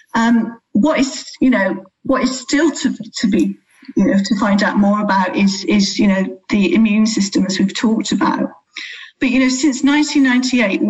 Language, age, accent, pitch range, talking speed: English, 50-69, British, 195-245 Hz, 185 wpm